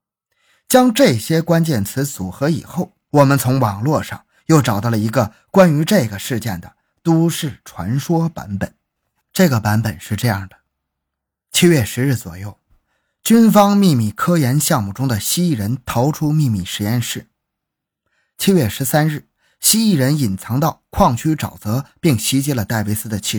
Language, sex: Chinese, male